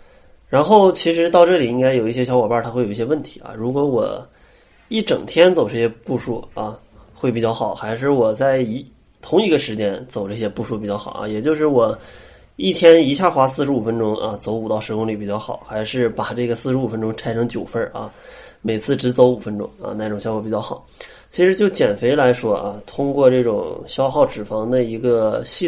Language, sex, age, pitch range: Chinese, male, 20-39, 110-135 Hz